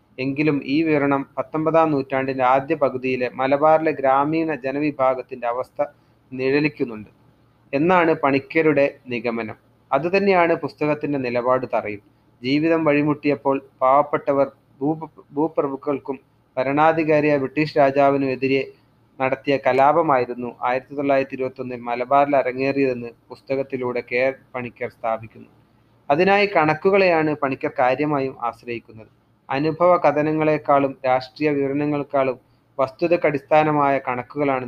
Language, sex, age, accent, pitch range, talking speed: Malayalam, male, 30-49, native, 125-150 Hz, 85 wpm